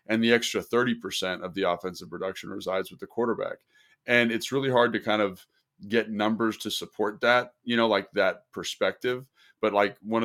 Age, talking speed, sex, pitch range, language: 30-49, 185 wpm, male, 100-115 Hz, English